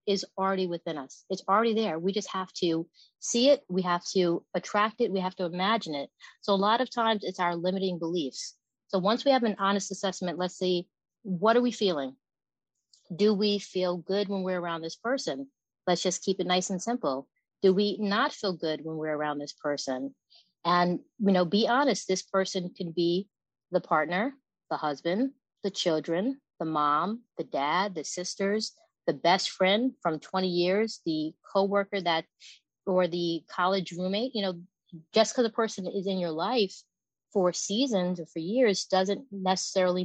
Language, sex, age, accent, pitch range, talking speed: English, female, 40-59, American, 175-215 Hz, 185 wpm